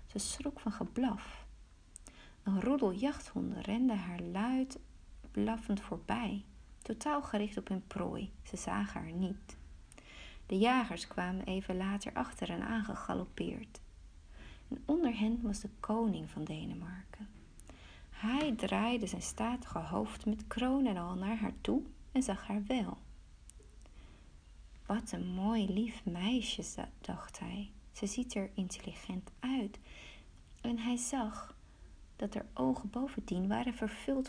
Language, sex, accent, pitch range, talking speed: Dutch, female, Dutch, 180-235 Hz, 130 wpm